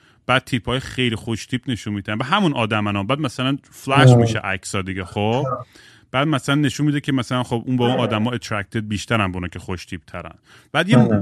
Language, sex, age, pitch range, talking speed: Persian, male, 30-49, 115-150 Hz, 195 wpm